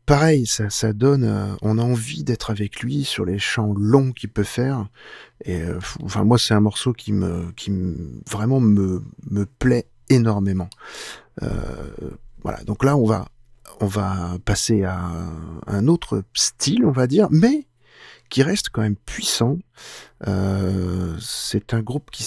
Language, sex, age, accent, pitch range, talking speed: French, male, 40-59, French, 100-130 Hz, 155 wpm